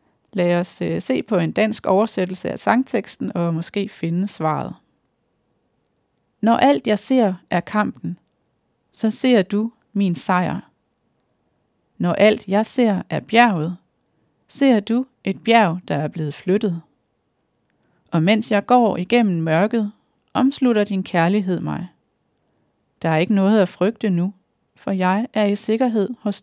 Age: 30-49